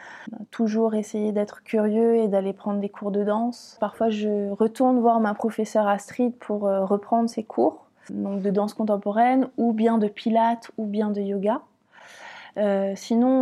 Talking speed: 160 wpm